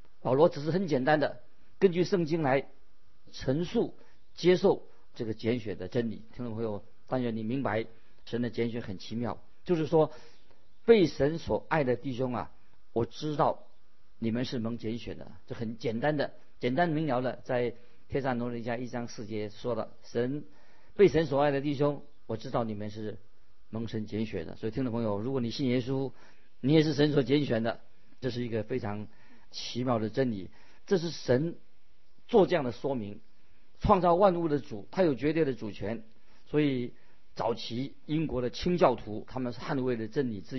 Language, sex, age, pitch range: Chinese, male, 50-69, 110-150 Hz